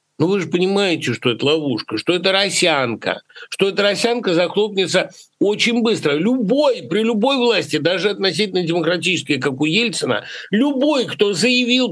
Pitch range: 175-245 Hz